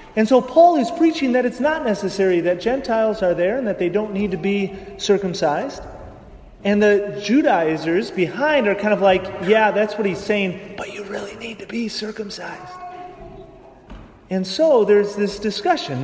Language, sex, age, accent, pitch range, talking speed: English, male, 30-49, American, 205-275 Hz, 170 wpm